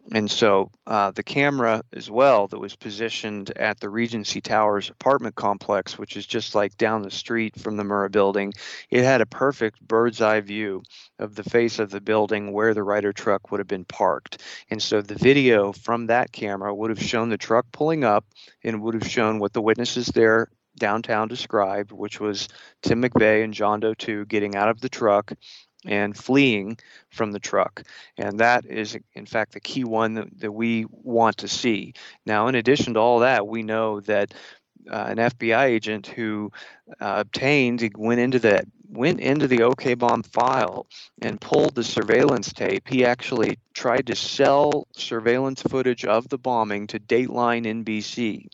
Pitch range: 105-120 Hz